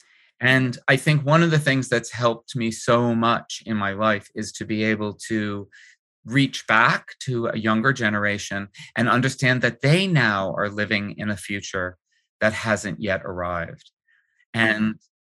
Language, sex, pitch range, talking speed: English, male, 110-150 Hz, 160 wpm